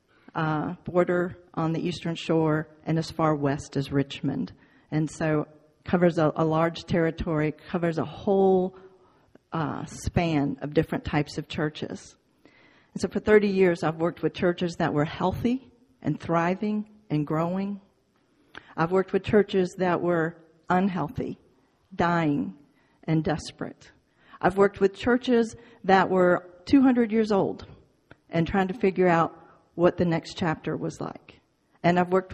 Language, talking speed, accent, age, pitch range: English, 145 wpm, American, 50-69, 155-185 Hz